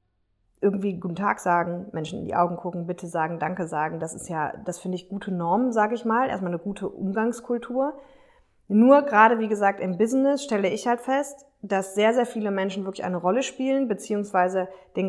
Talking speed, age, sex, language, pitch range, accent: 195 wpm, 20-39, female, German, 180-225 Hz, German